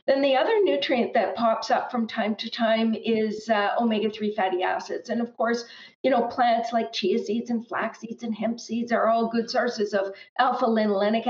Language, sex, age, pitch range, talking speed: English, female, 50-69, 205-250 Hz, 195 wpm